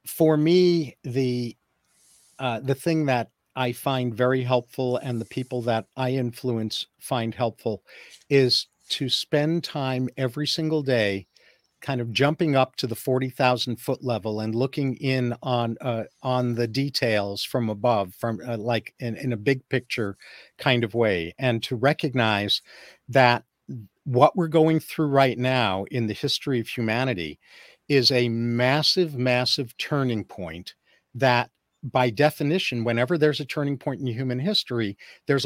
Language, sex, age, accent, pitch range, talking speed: English, male, 50-69, American, 120-150 Hz, 150 wpm